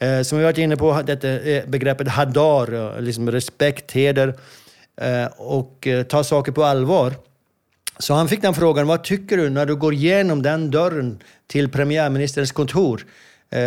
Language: Swedish